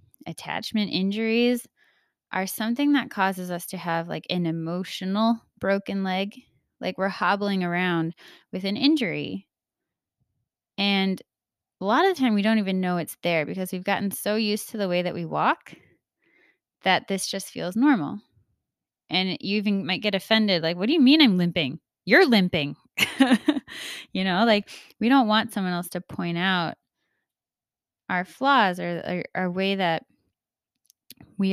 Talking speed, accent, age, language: 160 wpm, American, 20-39, English